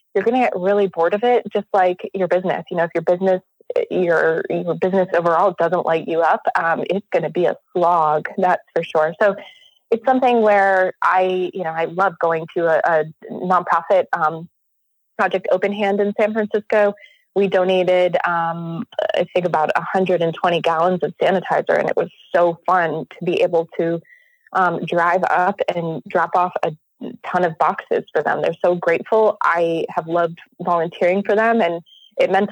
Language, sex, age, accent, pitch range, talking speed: English, female, 20-39, American, 170-205 Hz, 185 wpm